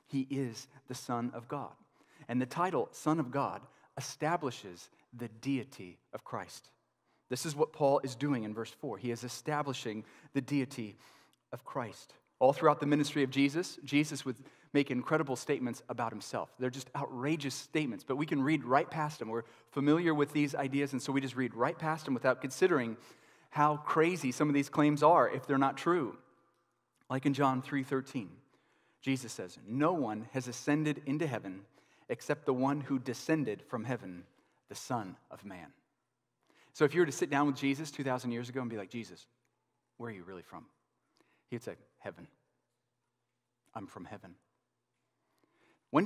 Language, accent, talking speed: English, American, 175 wpm